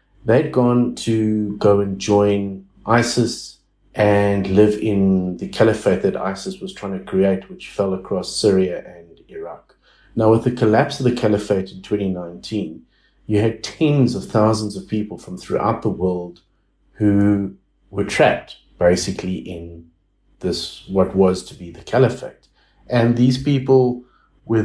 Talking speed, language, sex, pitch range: 145 wpm, English, male, 95-120 Hz